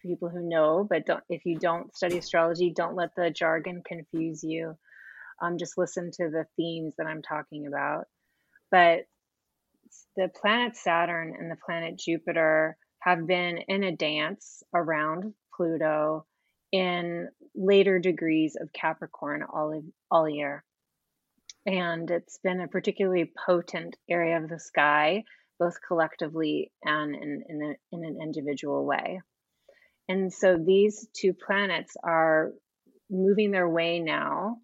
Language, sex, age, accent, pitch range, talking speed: English, female, 30-49, American, 160-190 Hz, 135 wpm